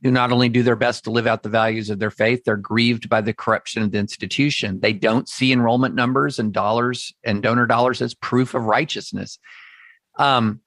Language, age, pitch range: English, 40-59, 115-145 Hz